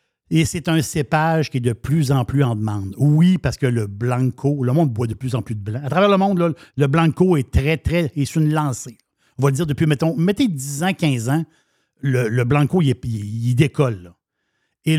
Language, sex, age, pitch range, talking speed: French, male, 60-79, 130-170 Hz, 235 wpm